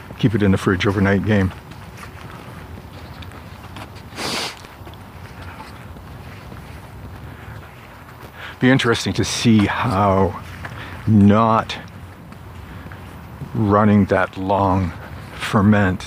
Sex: male